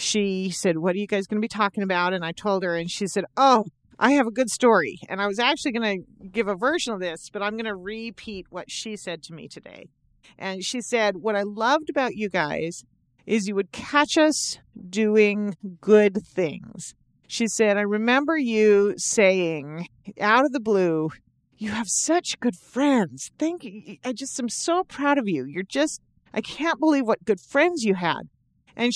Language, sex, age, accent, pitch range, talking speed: English, female, 40-59, American, 190-255 Hz, 205 wpm